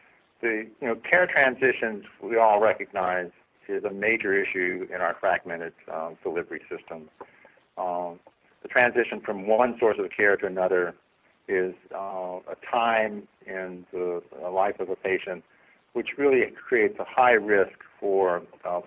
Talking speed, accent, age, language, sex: 145 wpm, American, 50-69, English, male